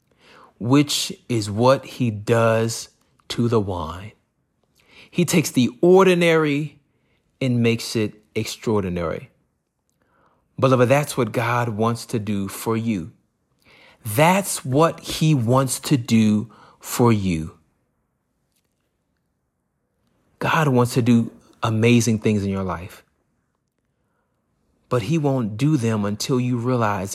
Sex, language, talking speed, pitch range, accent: male, English, 110 wpm, 110-130 Hz, American